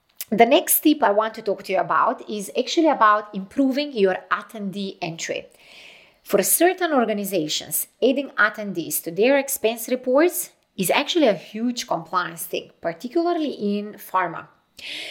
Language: English